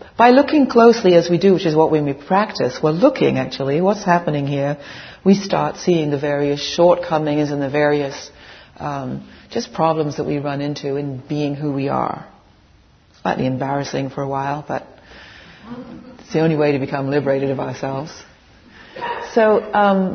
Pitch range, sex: 140-185 Hz, female